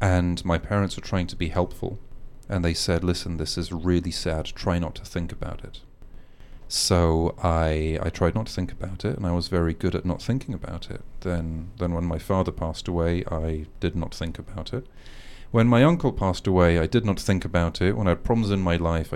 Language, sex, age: English, male, 30-49